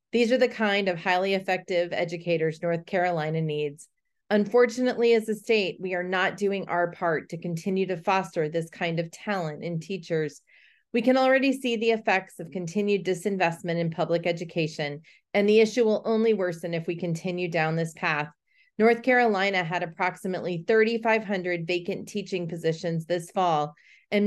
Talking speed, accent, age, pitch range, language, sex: 165 wpm, American, 30-49, 170-205 Hz, English, female